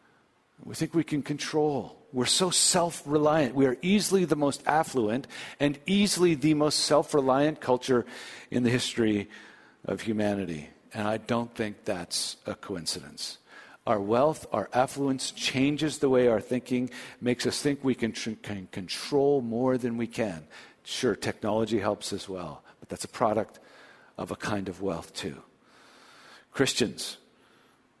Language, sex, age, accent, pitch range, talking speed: English, male, 50-69, American, 110-145 Hz, 145 wpm